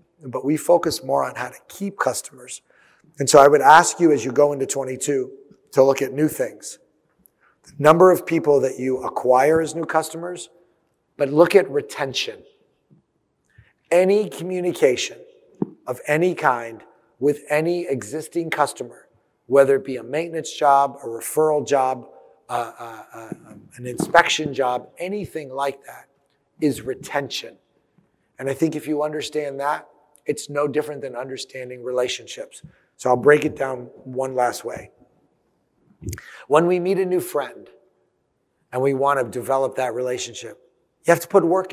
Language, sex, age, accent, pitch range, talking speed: English, male, 30-49, American, 135-165 Hz, 155 wpm